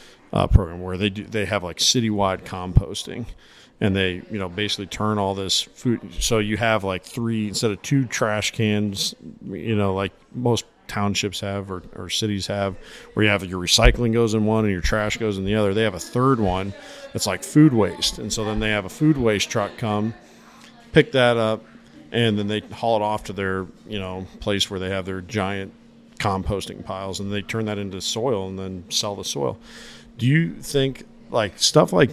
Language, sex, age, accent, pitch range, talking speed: English, male, 50-69, American, 95-110 Hz, 205 wpm